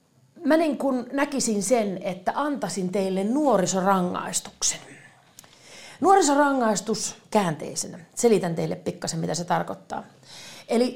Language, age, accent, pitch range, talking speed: Finnish, 30-49, native, 180-245 Hz, 95 wpm